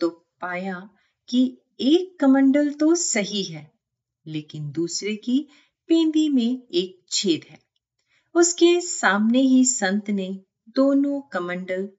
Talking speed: 105 wpm